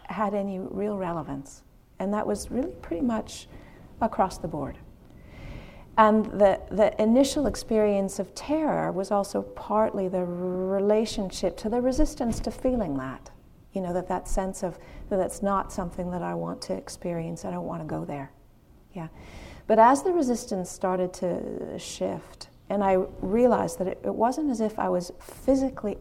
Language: English